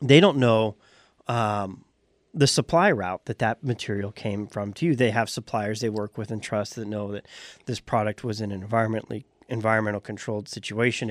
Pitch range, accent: 110-135 Hz, American